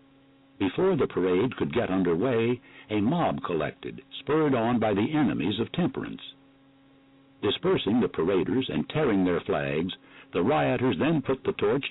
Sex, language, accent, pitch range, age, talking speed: male, English, American, 115-135 Hz, 60-79, 150 wpm